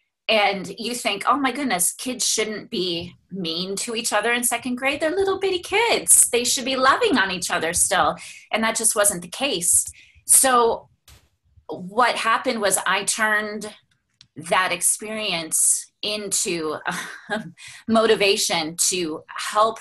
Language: English